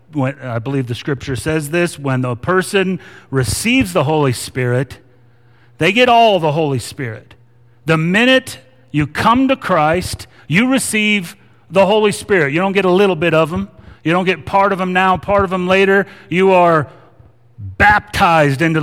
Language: English